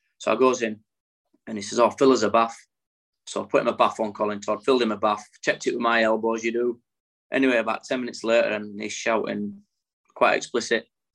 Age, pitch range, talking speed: 20-39, 110-130 Hz, 220 wpm